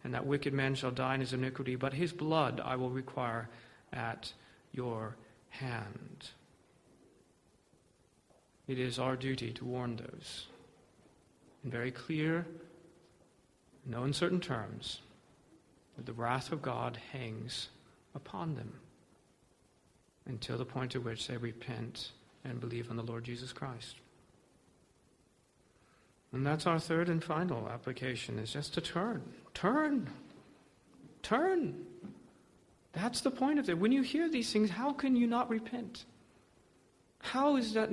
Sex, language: male, English